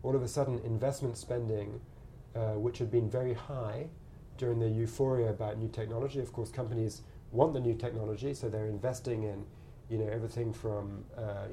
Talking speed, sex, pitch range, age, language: 175 wpm, male, 110-135 Hz, 30-49, English